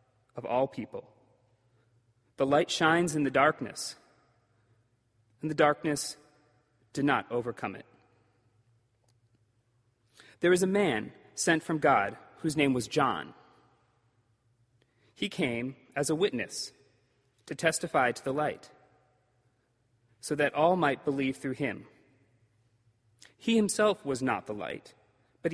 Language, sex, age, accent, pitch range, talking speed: English, male, 30-49, American, 115-155 Hz, 120 wpm